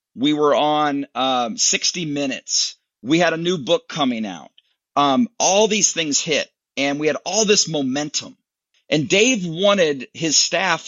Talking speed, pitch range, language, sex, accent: 160 wpm, 145-215 Hz, English, male, American